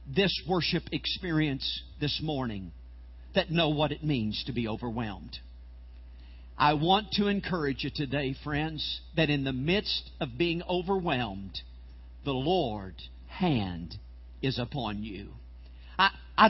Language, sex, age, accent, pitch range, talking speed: English, male, 50-69, American, 140-185 Hz, 125 wpm